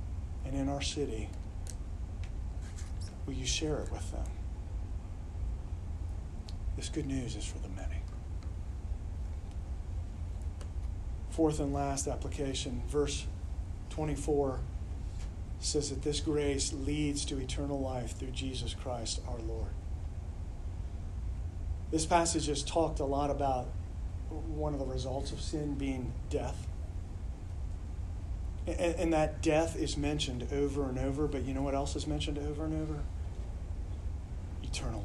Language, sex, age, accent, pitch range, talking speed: English, male, 40-59, American, 80-95 Hz, 120 wpm